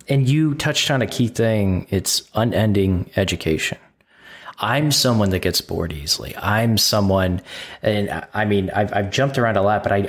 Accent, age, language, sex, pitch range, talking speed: American, 20-39, English, male, 95-125 Hz, 170 wpm